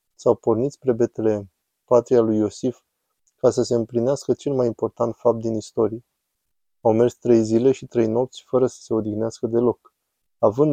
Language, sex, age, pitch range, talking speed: Romanian, male, 20-39, 110-125 Hz, 170 wpm